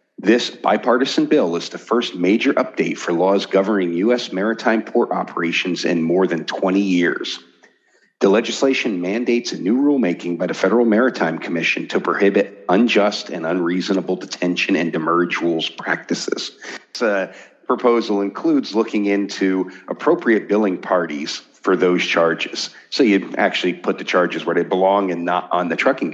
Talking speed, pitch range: 150 wpm, 90-115 Hz